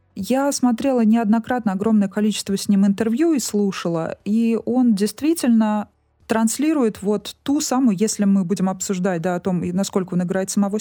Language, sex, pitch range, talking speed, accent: Russian, female, 180-230 Hz, 155 wpm, native